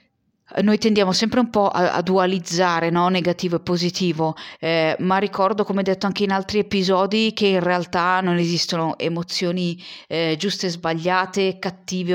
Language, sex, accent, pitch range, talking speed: Italian, female, native, 155-190 Hz, 160 wpm